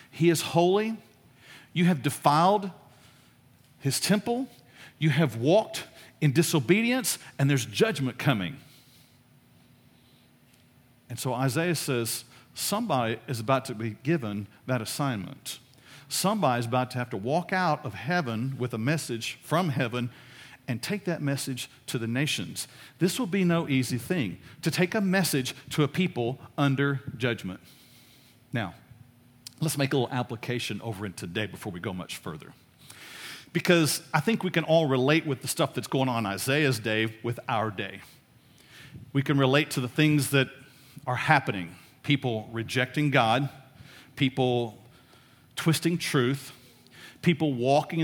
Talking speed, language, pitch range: 145 wpm, English, 125-155 Hz